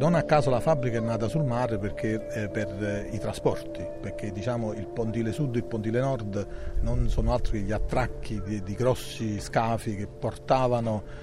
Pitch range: 105-130 Hz